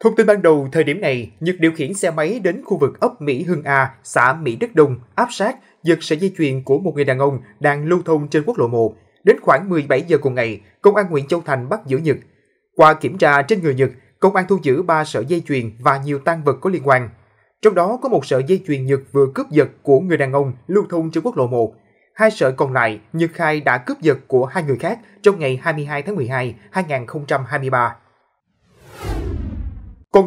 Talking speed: 230 wpm